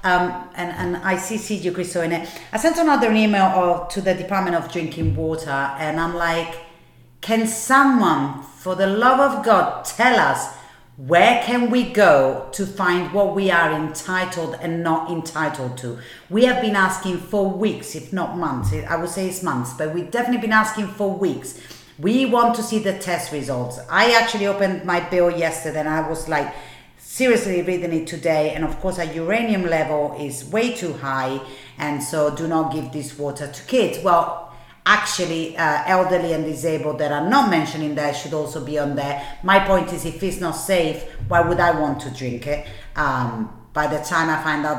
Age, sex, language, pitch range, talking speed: 40-59, female, English, 150-195 Hz, 195 wpm